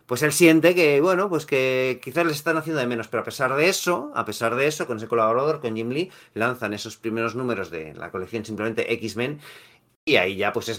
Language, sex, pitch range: Spanish, male, 115-155 Hz